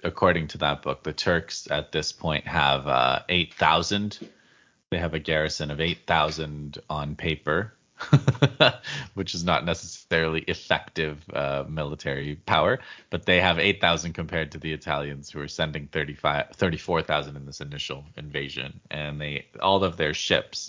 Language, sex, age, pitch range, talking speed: English, male, 30-49, 75-90 Hz, 145 wpm